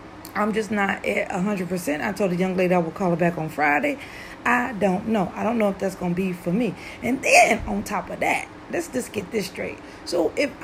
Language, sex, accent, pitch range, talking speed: English, female, American, 185-245 Hz, 250 wpm